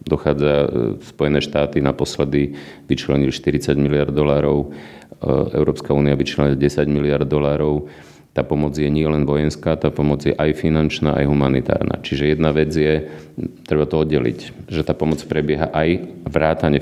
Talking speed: 145 wpm